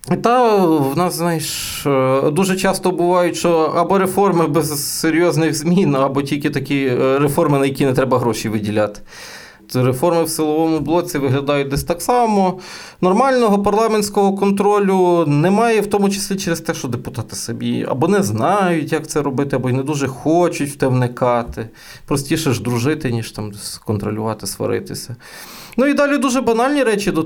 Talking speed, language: 160 wpm, Ukrainian